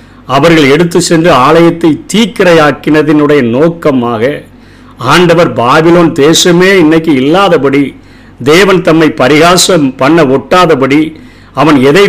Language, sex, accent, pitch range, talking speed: Tamil, male, native, 140-170 Hz, 90 wpm